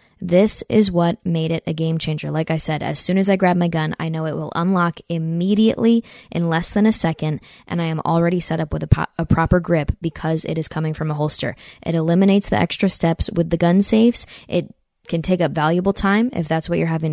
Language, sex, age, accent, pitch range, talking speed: English, female, 20-39, American, 160-180 Hz, 235 wpm